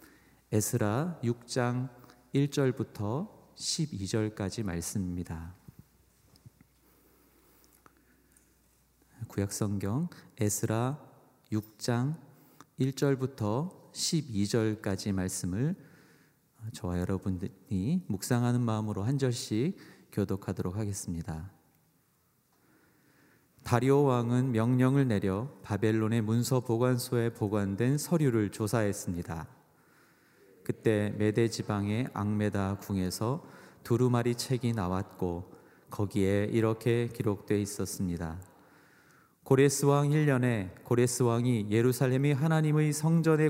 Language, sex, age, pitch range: Korean, male, 40-59, 100-130 Hz